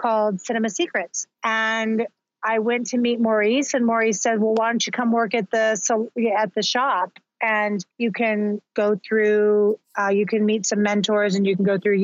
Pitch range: 200-225 Hz